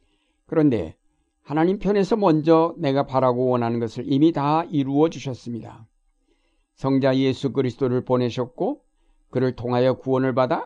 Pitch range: 120-155 Hz